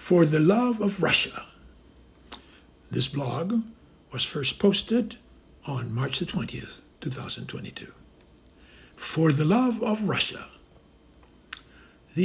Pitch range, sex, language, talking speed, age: 130-185 Hz, male, English, 105 wpm, 60-79